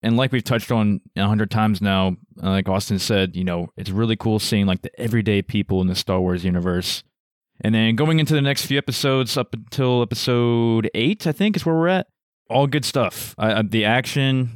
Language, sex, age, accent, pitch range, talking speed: English, male, 20-39, American, 100-120 Hz, 215 wpm